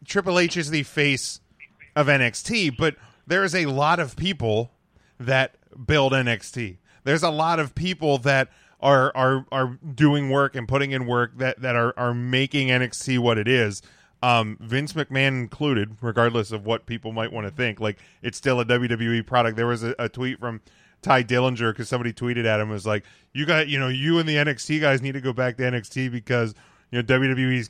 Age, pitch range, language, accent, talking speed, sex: 30-49, 120-140 Hz, English, American, 205 wpm, male